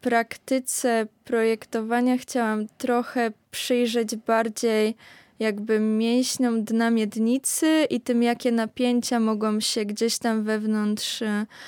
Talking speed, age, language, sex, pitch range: 105 wpm, 20-39, Polish, female, 205-230 Hz